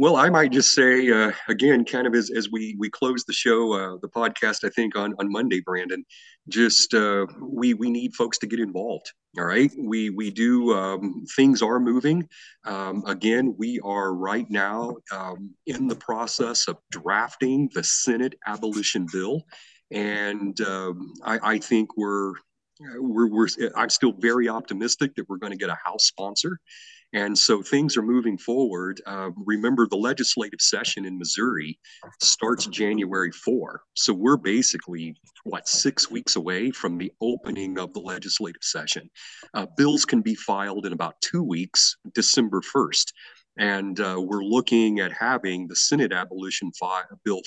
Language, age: English, 40-59